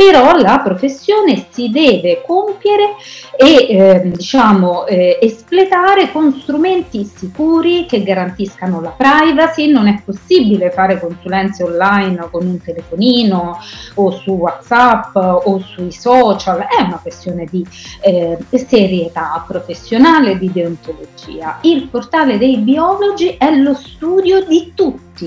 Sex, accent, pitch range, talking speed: female, native, 175-270 Hz, 120 wpm